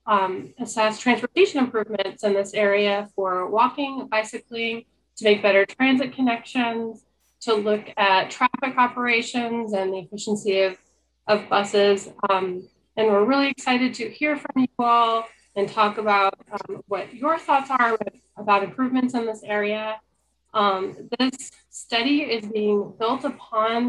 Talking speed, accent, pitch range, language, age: 140 wpm, American, 200-245 Hz, English, 20-39